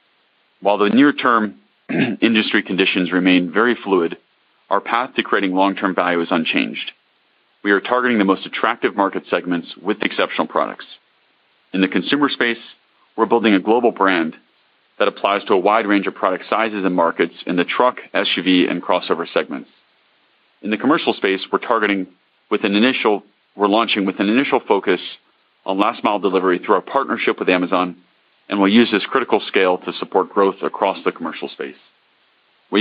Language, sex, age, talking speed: English, male, 40-59, 170 wpm